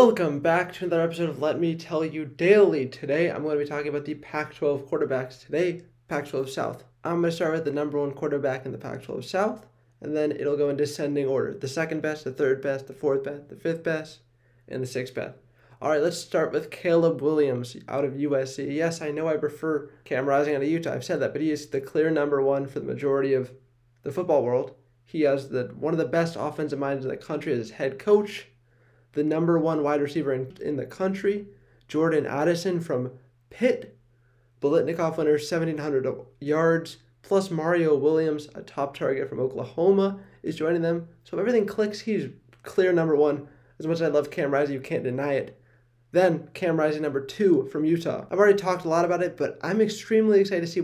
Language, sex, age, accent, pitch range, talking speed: English, male, 20-39, American, 135-165 Hz, 210 wpm